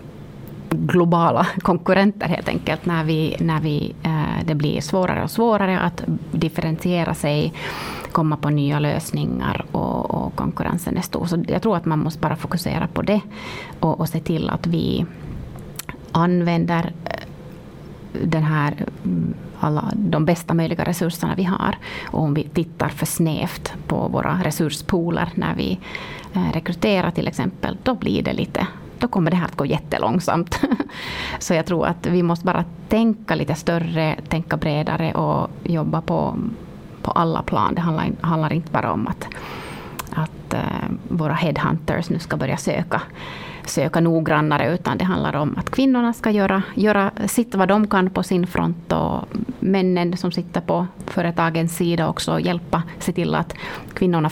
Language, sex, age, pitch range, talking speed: Swedish, female, 30-49, 160-185 Hz, 150 wpm